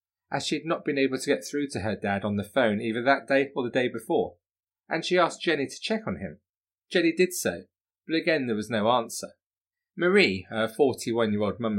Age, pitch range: 30-49, 95-140 Hz